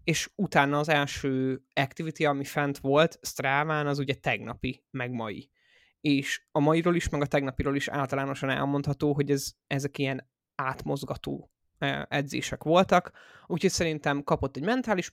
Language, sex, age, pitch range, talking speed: Hungarian, male, 20-39, 135-155 Hz, 145 wpm